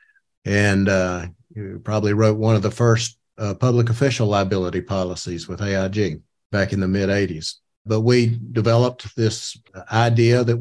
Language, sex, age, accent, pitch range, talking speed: English, male, 50-69, American, 105-120 Hz, 155 wpm